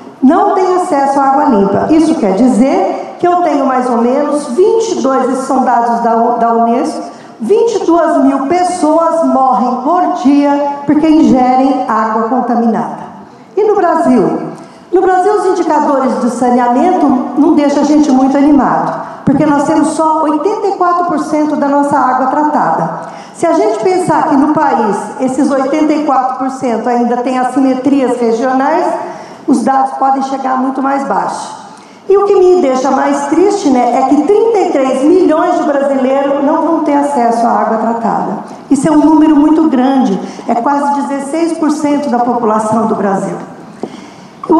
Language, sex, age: Portuguese, female, 50-69